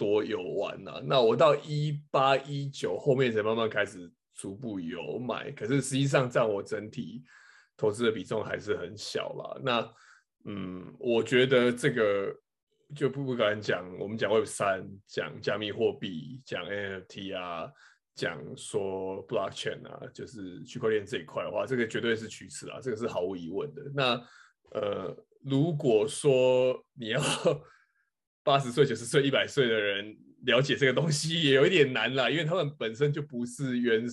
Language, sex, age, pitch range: Chinese, male, 20-39, 110-140 Hz